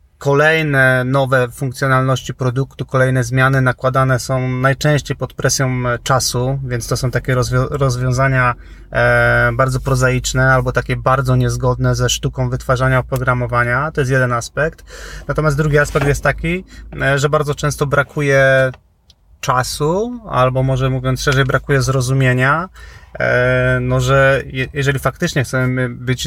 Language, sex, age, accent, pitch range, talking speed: Polish, male, 20-39, native, 125-140 Hz, 120 wpm